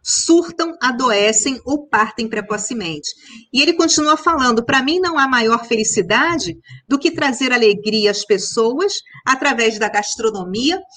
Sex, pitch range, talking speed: female, 215-285 Hz, 130 wpm